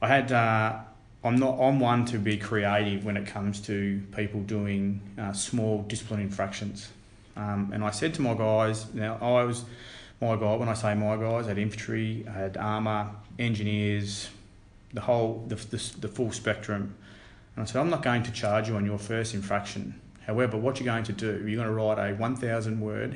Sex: male